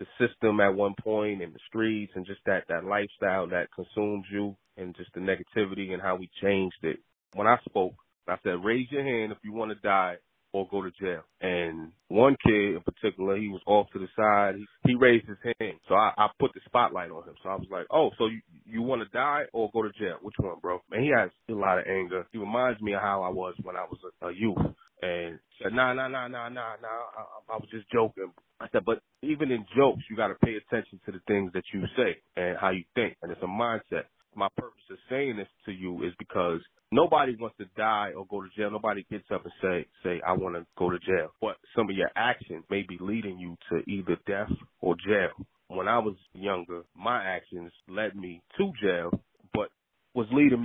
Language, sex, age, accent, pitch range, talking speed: English, male, 30-49, American, 95-110 Hz, 235 wpm